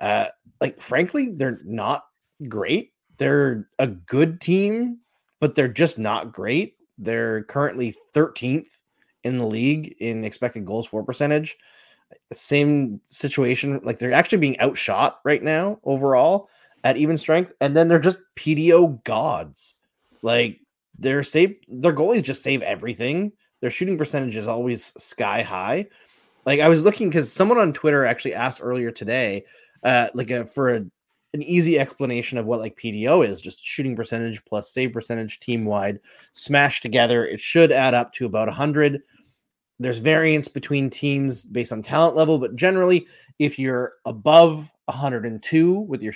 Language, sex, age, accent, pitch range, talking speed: English, male, 20-39, American, 115-160 Hz, 150 wpm